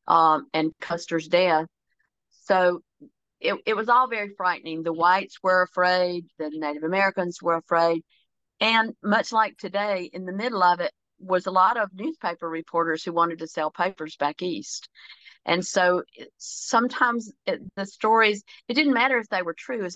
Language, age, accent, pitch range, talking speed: English, 50-69, American, 165-195 Hz, 165 wpm